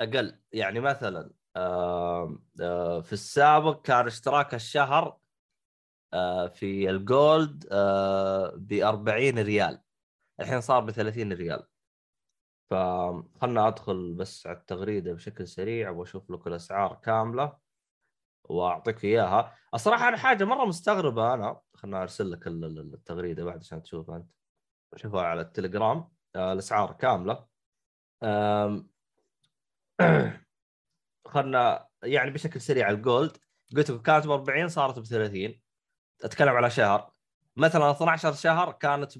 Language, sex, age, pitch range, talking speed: Arabic, male, 20-39, 95-145 Hz, 100 wpm